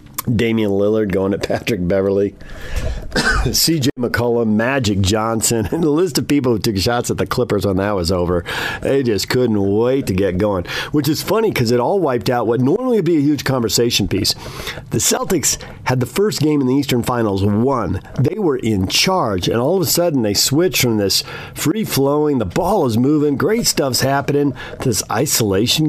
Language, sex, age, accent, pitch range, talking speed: English, male, 50-69, American, 110-150 Hz, 190 wpm